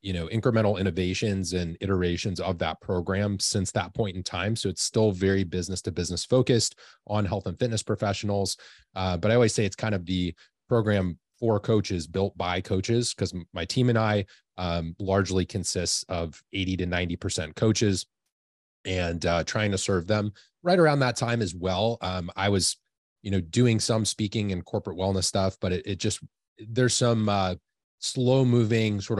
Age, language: 30-49, English